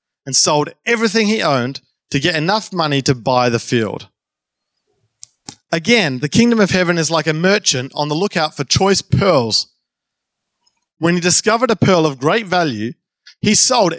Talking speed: 165 wpm